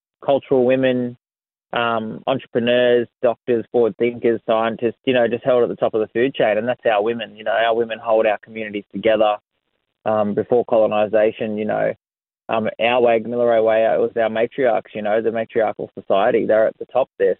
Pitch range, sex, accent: 110-125 Hz, male, Australian